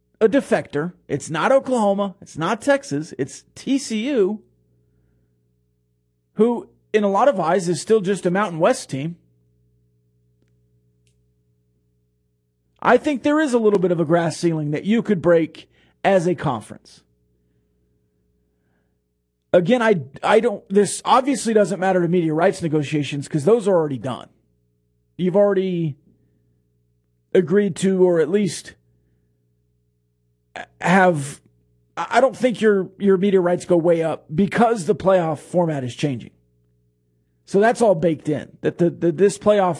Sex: male